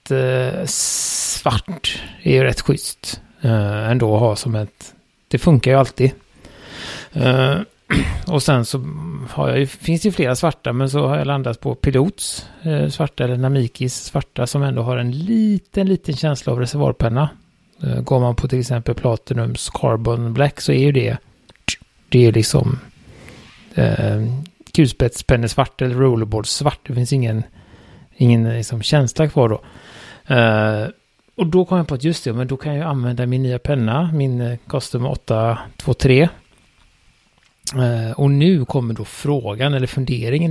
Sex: male